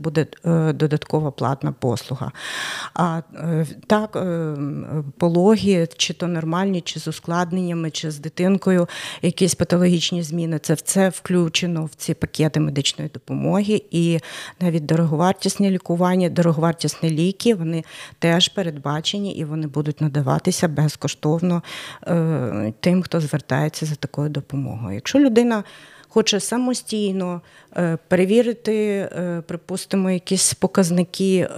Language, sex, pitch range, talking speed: Ukrainian, female, 160-190 Hz, 110 wpm